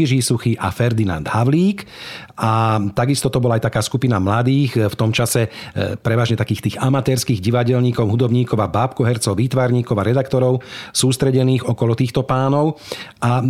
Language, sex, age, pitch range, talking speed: Slovak, male, 40-59, 110-135 Hz, 140 wpm